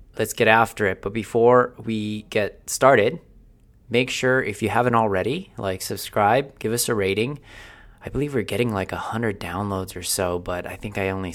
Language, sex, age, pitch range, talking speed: English, male, 20-39, 90-110 Hz, 190 wpm